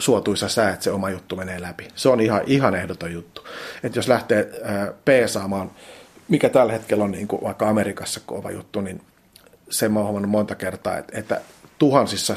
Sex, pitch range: male, 100-110 Hz